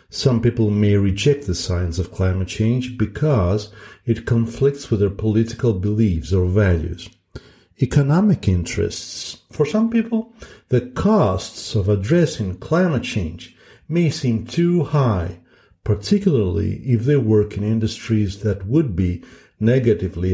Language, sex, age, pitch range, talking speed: English, male, 50-69, 95-130 Hz, 125 wpm